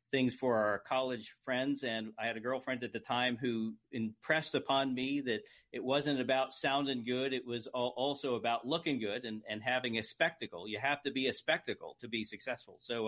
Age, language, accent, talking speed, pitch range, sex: 40-59, English, American, 205 wpm, 120-145 Hz, male